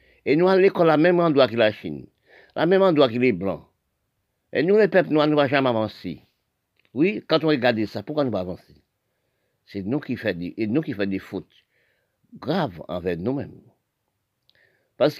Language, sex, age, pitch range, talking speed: French, male, 50-69, 120-170 Hz, 180 wpm